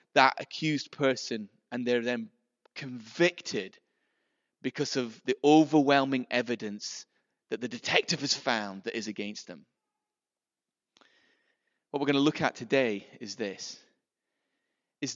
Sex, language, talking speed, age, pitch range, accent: male, English, 125 wpm, 30-49, 130-185 Hz, British